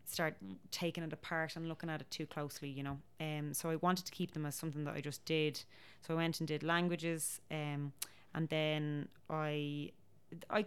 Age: 20-39